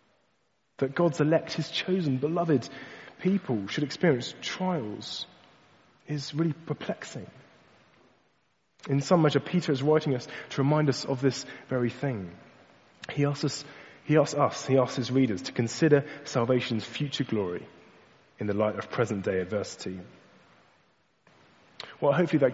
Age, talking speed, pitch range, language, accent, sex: 30-49, 140 wpm, 120-150 Hz, English, British, male